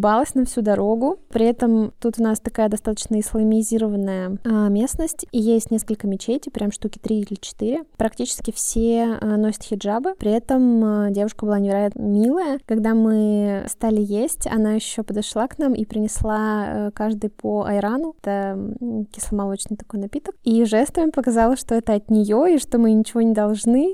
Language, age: Russian, 20-39